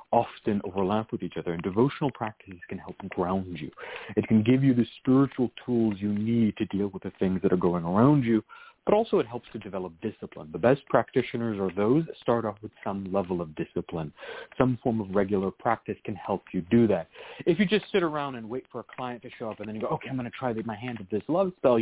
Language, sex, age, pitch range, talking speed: English, male, 40-59, 105-150 Hz, 245 wpm